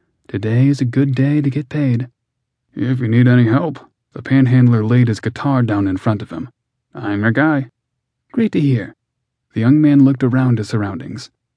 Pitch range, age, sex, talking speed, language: 110-135 Hz, 30-49, male, 185 wpm, English